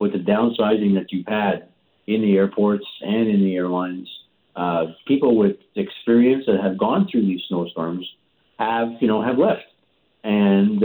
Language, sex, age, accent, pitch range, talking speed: English, male, 50-69, American, 95-120 Hz, 160 wpm